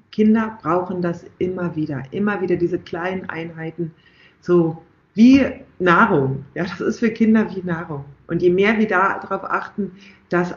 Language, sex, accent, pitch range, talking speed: German, female, German, 165-205 Hz, 155 wpm